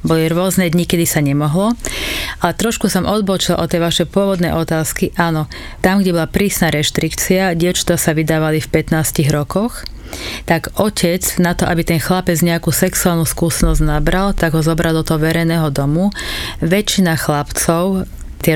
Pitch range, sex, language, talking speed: 160-175 Hz, female, English, 150 wpm